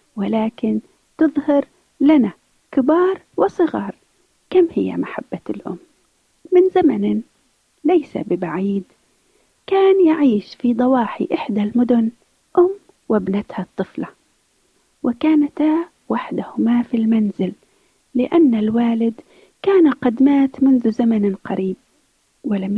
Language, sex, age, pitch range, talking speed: Arabic, female, 40-59, 230-325 Hz, 90 wpm